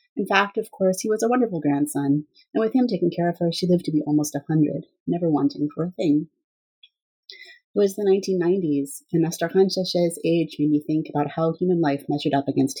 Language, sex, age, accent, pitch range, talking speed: English, female, 30-49, American, 145-195 Hz, 220 wpm